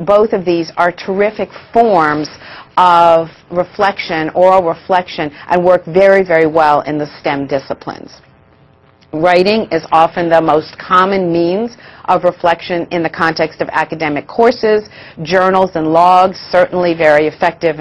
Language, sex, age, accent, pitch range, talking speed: English, female, 40-59, American, 165-205 Hz, 135 wpm